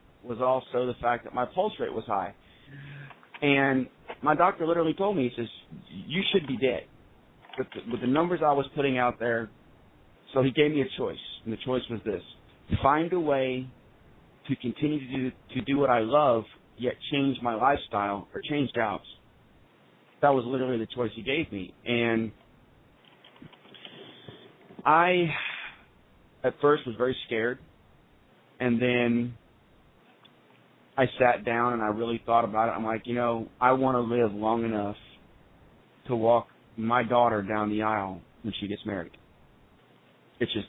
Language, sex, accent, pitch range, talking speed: English, male, American, 110-130 Hz, 160 wpm